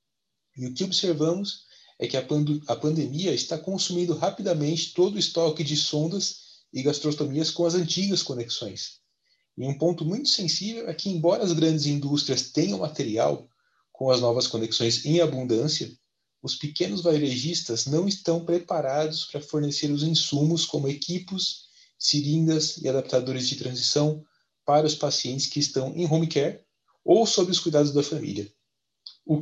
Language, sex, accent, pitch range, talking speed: Portuguese, male, Brazilian, 130-165 Hz, 150 wpm